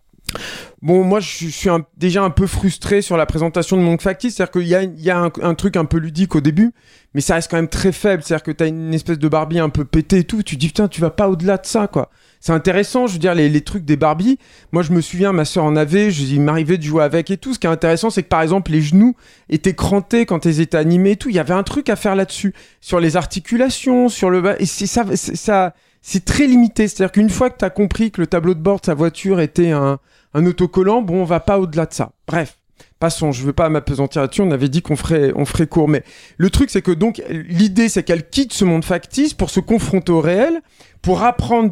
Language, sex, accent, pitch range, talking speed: French, male, French, 160-200 Hz, 280 wpm